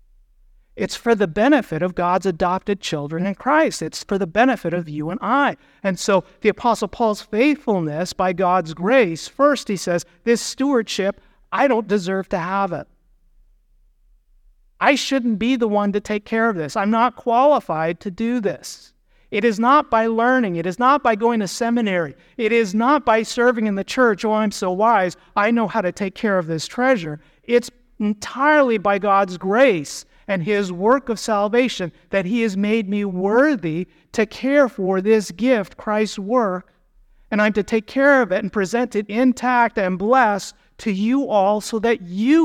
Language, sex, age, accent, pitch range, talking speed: English, male, 50-69, American, 185-235 Hz, 180 wpm